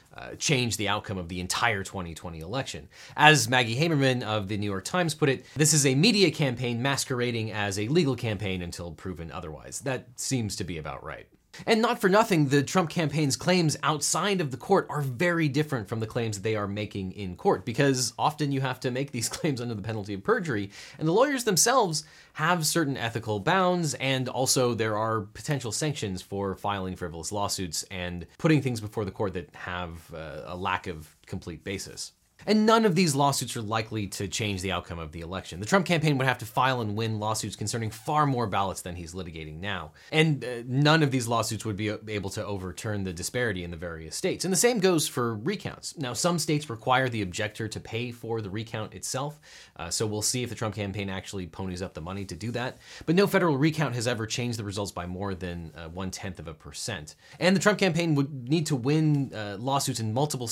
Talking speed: 215 wpm